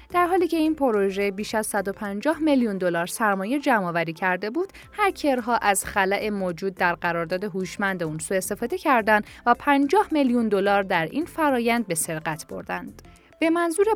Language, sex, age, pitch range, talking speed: Persian, female, 10-29, 185-270 Hz, 155 wpm